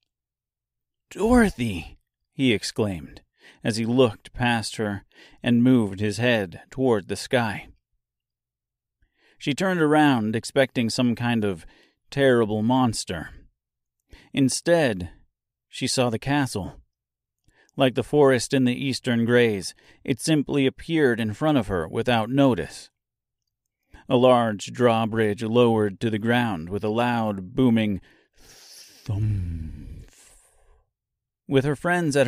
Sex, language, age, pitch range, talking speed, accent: male, English, 40-59, 105-135 Hz, 115 wpm, American